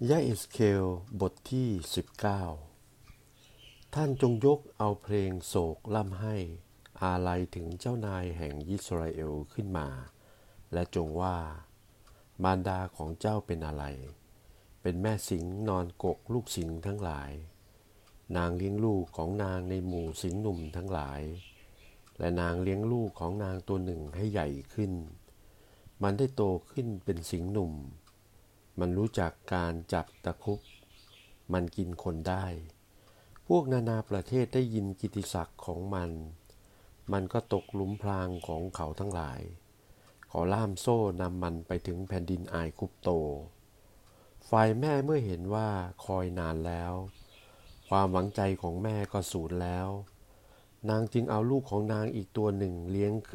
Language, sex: Thai, male